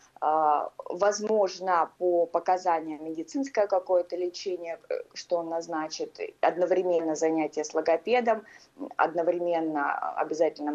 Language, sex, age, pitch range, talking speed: Russian, female, 20-39, 165-220 Hz, 80 wpm